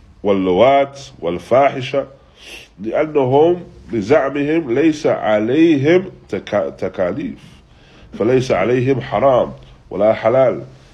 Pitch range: 90-130 Hz